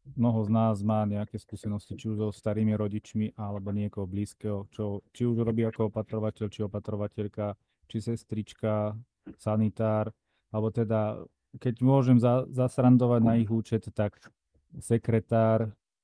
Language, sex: Slovak, male